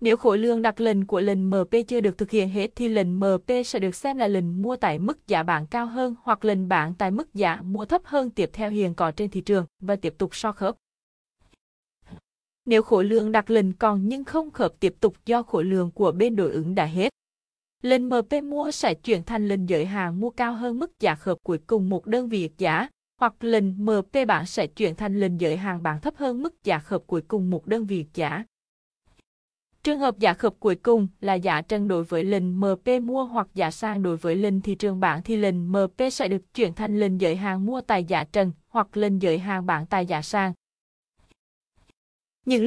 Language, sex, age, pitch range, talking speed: Vietnamese, female, 20-39, 185-235 Hz, 220 wpm